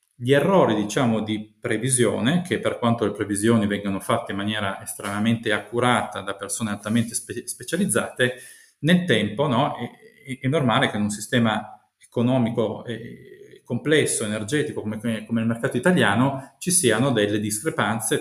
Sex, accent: male, native